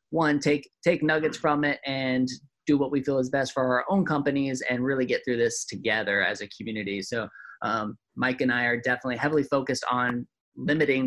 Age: 20-39